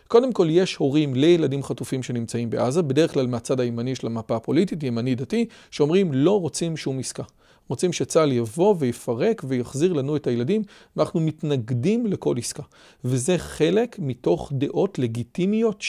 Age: 40-59